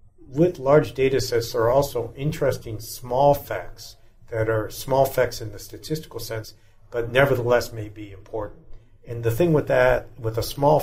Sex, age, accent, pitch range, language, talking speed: male, 60-79, American, 105-120 Hz, English, 170 wpm